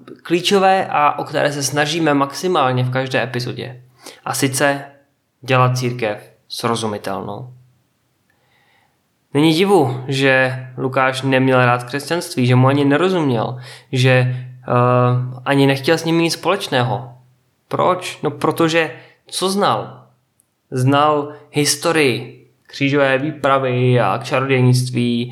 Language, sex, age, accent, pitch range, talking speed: Czech, male, 20-39, native, 125-140 Hz, 105 wpm